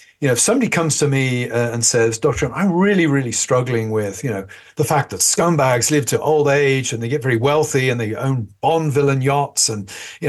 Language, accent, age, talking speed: English, British, 50-69, 225 wpm